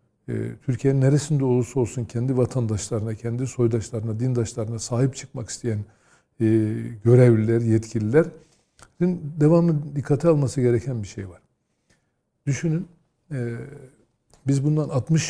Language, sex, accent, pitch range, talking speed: Turkish, male, native, 115-150 Hz, 100 wpm